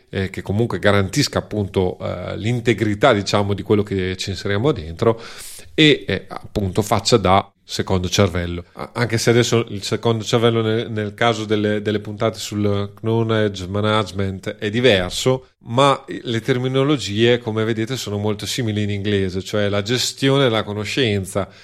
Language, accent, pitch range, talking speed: Italian, native, 100-125 Hz, 140 wpm